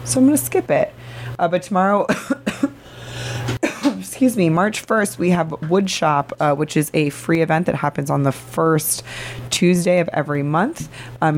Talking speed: 175 wpm